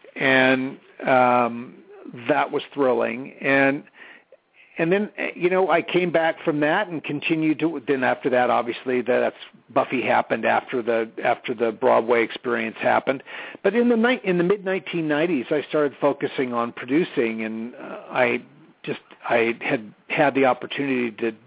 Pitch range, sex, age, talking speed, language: 125-165 Hz, male, 50-69, 155 wpm, English